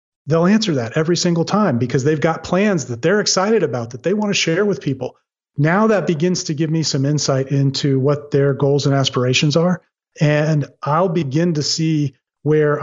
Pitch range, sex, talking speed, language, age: 140-165 Hz, male, 195 wpm, English, 40-59